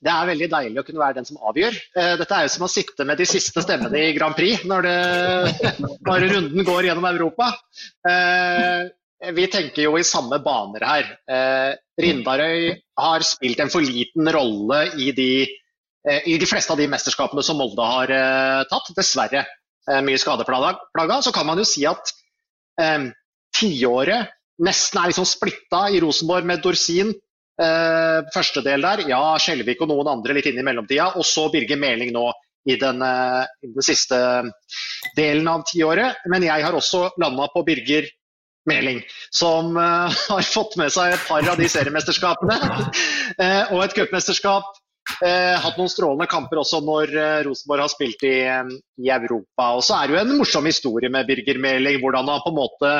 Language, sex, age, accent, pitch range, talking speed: English, male, 30-49, Norwegian, 140-180 Hz, 175 wpm